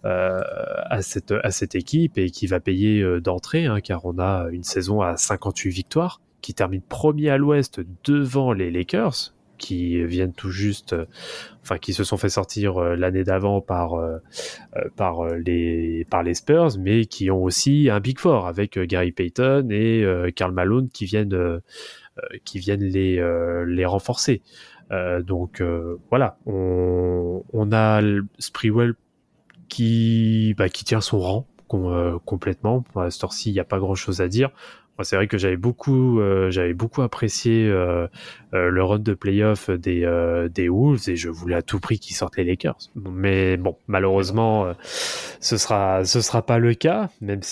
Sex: male